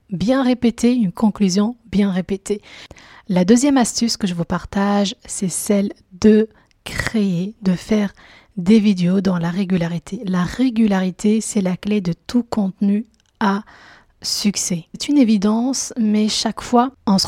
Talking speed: 150 wpm